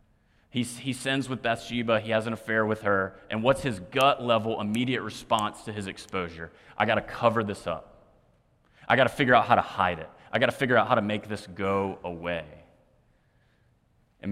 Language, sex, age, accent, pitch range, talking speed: English, male, 30-49, American, 95-125 Hz, 195 wpm